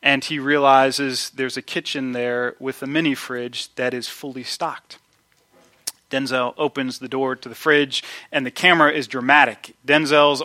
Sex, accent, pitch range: male, American, 130-165 Hz